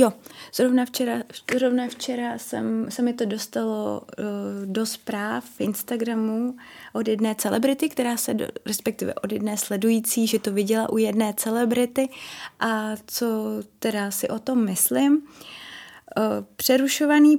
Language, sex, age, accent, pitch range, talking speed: Czech, female, 20-39, native, 215-250 Hz, 135 wpm